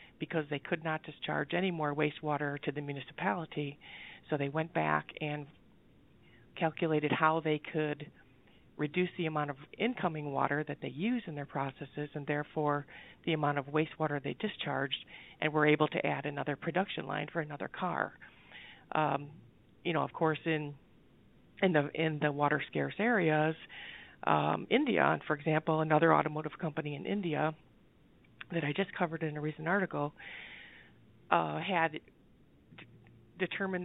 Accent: American